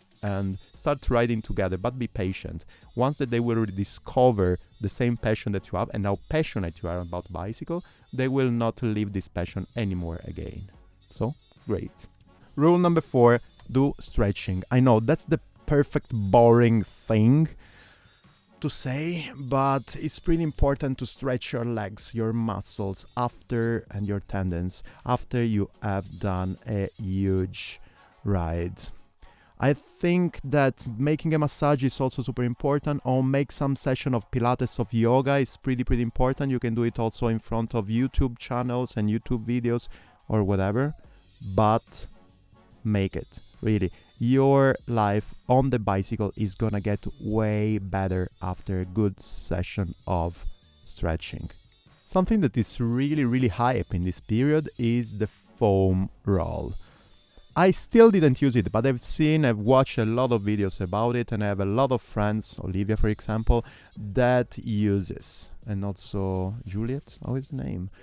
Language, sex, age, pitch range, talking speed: English, male, 30-49, 95-130 Hz, 155 wpm